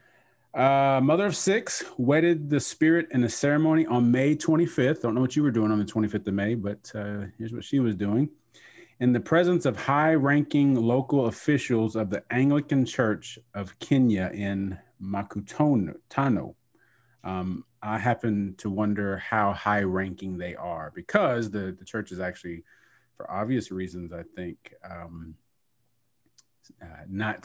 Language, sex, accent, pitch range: English, male, American, 100-140 Hz